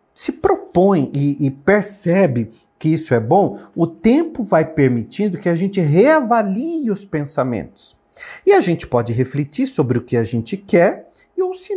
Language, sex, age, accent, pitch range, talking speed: Portuguese, male, 50-69, Brazilian, 115-175 Hz, 170 wpm